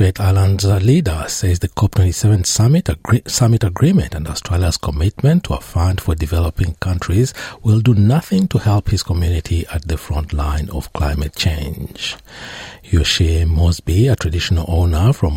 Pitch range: 80-110 Hz